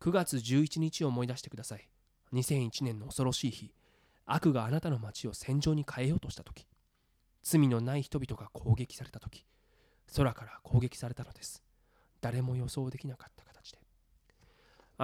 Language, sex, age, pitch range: Japanese, male, 20-39, 115-155 Hz